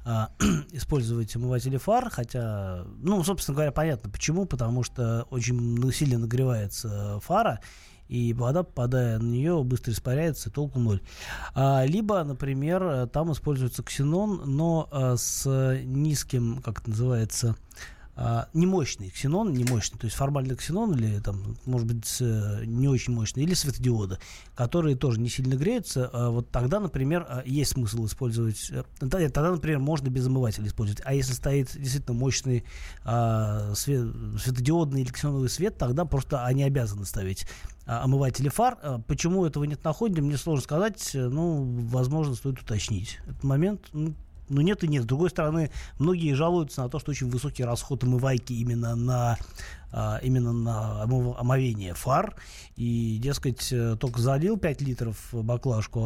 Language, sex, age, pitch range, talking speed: Russian, male, 20-39, 115-145 Hz, 140 wpm